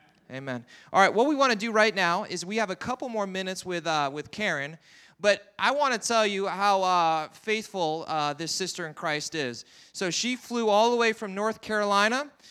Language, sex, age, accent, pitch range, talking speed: English, male, 30-49, American, 185-230 Hz, 215 wpm